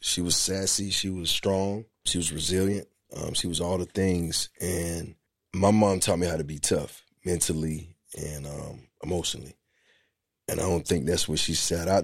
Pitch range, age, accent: 80-90 Hz, 30-49, American